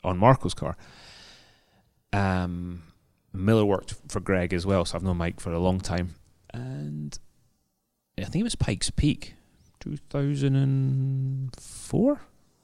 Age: 30-49